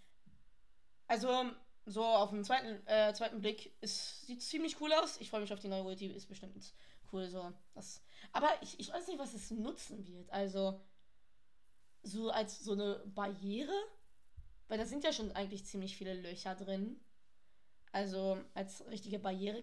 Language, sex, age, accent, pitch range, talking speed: German, female, 20-39, German, 195-225 Hz, 170 wpm